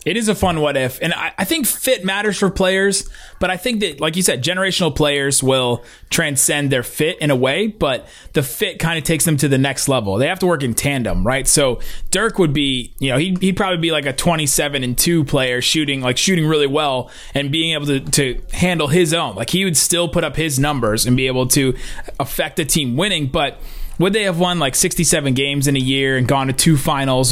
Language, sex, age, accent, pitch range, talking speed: English, male, 20-39, American, 130-175 Hz, 235 wpm